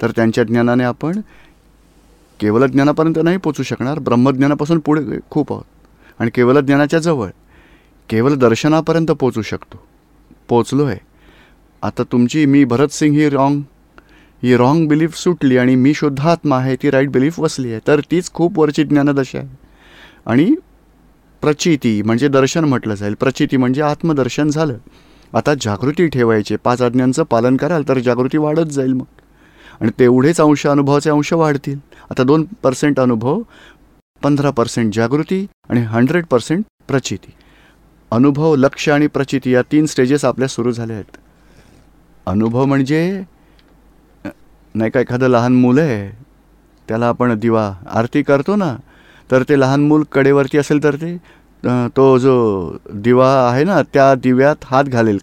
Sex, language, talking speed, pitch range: male, Gujarati, 130 wpm, 125-150 Hz